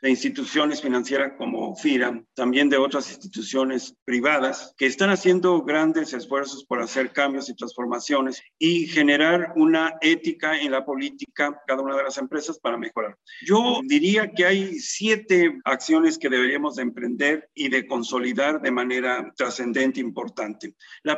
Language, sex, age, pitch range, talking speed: Spanish, male, 50-69, 135-200 Hz, 155 wpm